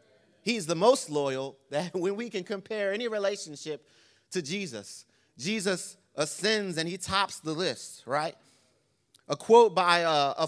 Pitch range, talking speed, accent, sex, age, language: 145-200 Hz, 145 wpm, American, male, 30-49, English